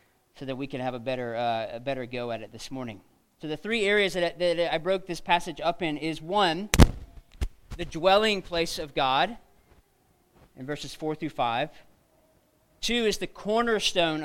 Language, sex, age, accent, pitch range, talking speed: English, male, 40-59, American, 140-195 Hz, 185 wpm